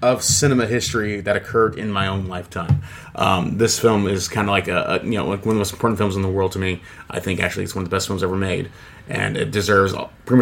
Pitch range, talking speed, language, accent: 95-110 Hz, 270 wpm, English, American